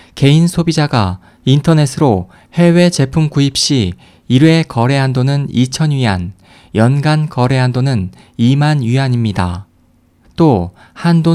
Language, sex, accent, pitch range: Korean, male, native, 120-160 Hz